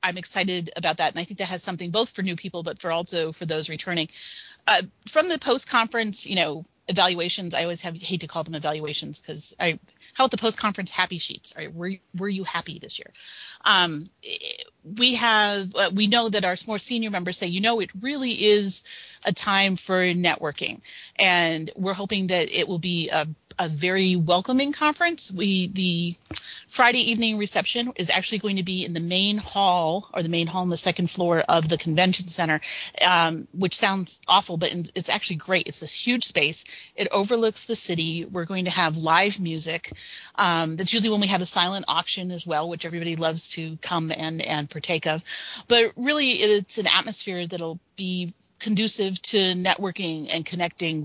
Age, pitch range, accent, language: 30-49, 170-210 Hz, American, English